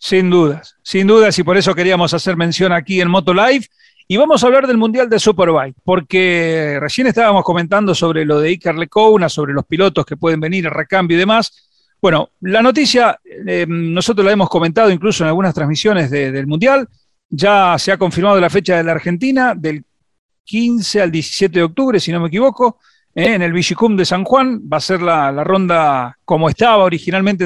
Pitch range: 170-210 Hz